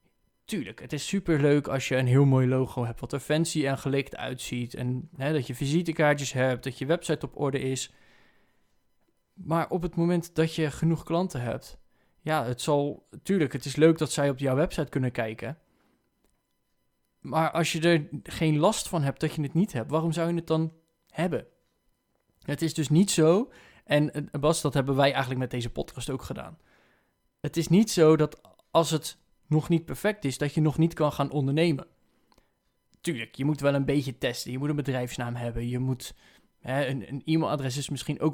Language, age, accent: Dutch, 20-39, Dutch